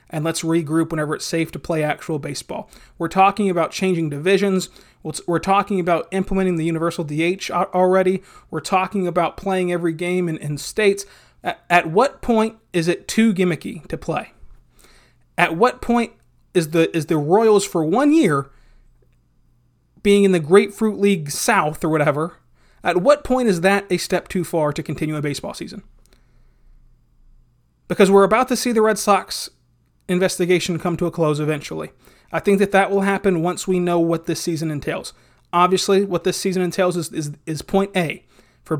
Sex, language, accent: male, English, American